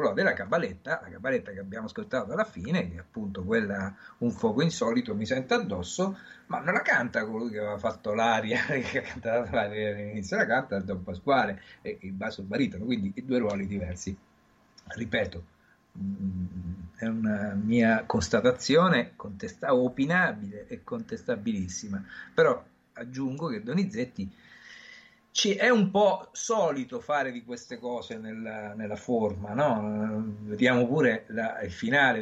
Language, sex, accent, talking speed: Italian, male, native, 140 wpm